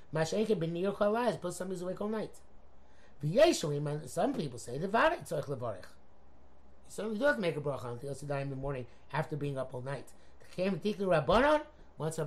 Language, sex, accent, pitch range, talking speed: English, male, American, 140-180 Hz, 175 wpm